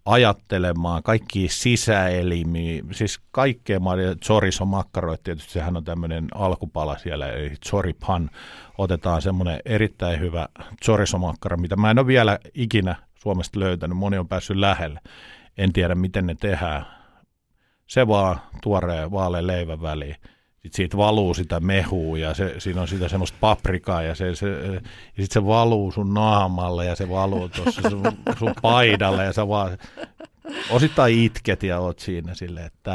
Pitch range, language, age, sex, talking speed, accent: 85-105 Hz, Finnish, 50-69, male, 150 wpm, native